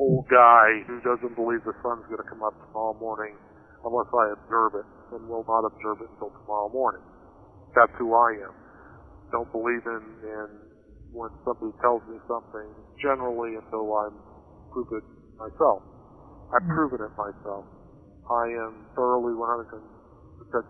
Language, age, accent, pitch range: English, 50-69, American, 105-125 Hz